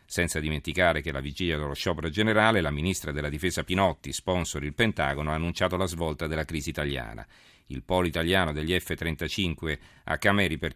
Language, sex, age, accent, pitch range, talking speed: Italian, male, 40-59, native, 75-90 Hz, 175 wpm